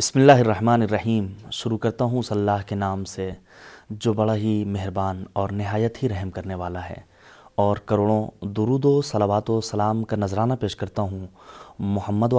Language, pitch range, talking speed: Urdu, 100-120 Hz, 175 wpm